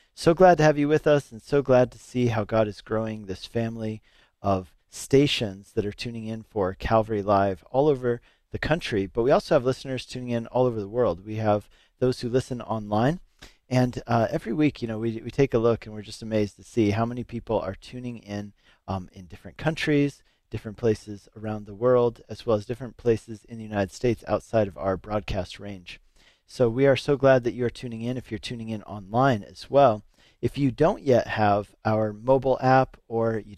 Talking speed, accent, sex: 215 wpm, American, male